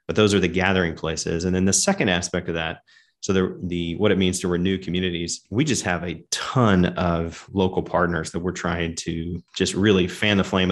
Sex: male